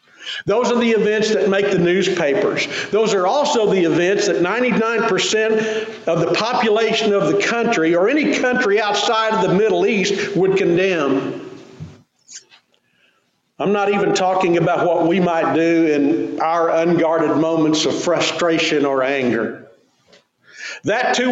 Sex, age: male, 50-69